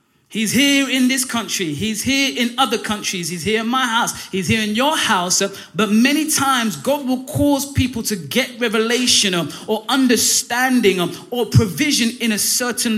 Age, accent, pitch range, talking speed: 20-39, British, 210-255 Hz, 170 wpm